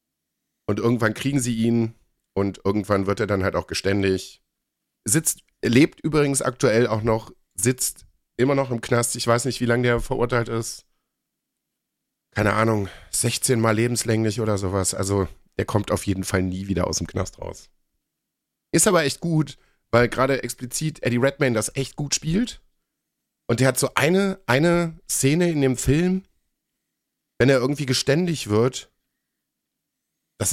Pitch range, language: 100-135 Hz, German